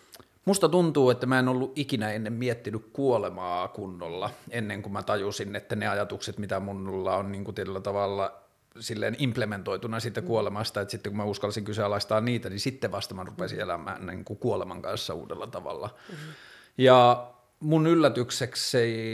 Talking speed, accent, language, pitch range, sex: 155 wpm, native, Finnish, 100-120 Hz, male